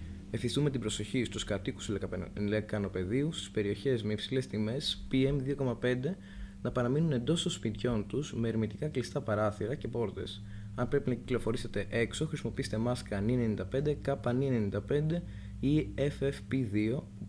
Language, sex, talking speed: Greek, male, 130 wpm